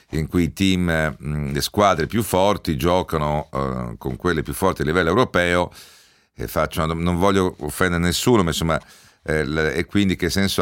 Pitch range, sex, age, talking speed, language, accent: 75-95 Hz, male, 50-69, 190 wpm, Italian, native